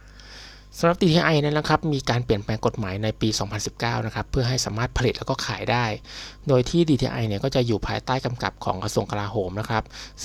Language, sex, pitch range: Thai, male, 105-130 Hz